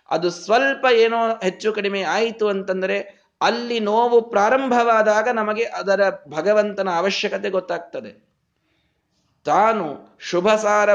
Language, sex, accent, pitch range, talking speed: Kannada, male, native, 175-230 Hz, 95 wpm